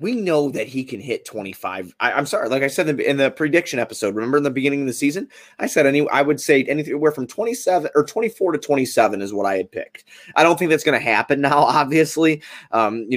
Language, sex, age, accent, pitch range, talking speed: English, male, 20-39, American, 105-130 Hz, 255 wpm